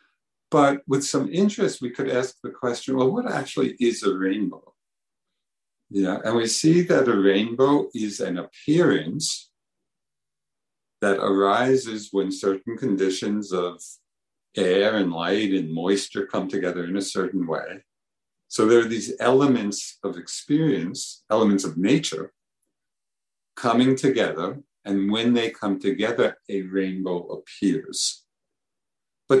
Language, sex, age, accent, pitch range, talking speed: English, male, 50-69, American, 100-135 Hz, 130 wpm